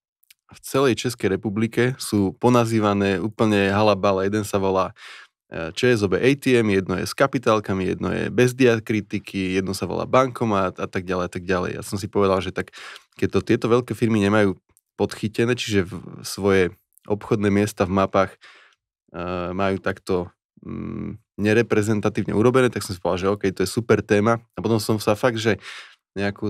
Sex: male